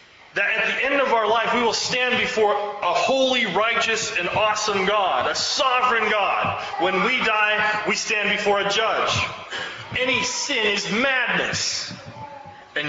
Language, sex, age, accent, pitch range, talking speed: English, male, 30-49, American, 205-260 Hz, 155 wpm